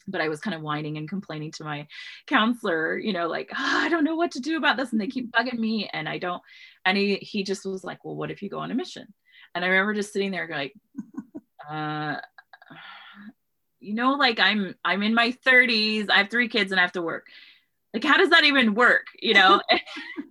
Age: 20-39